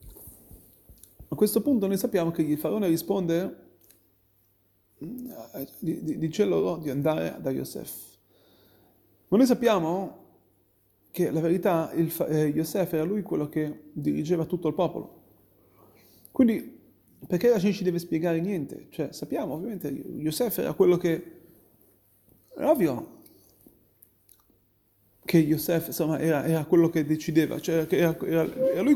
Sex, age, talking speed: male, 30-49, 130 wpm